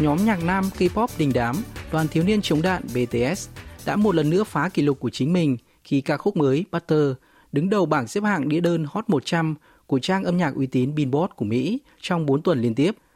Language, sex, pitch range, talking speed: Vietnamese, male, 125-170 Hz, 230 wpm